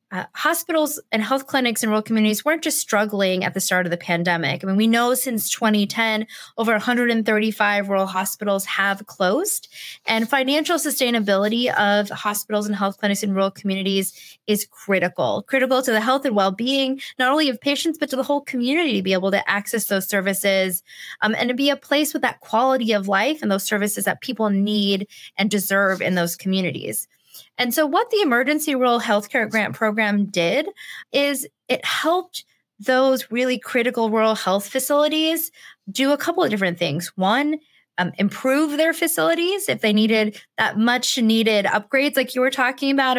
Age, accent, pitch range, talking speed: 20-39, American, 200-265 Hz, 180 wpm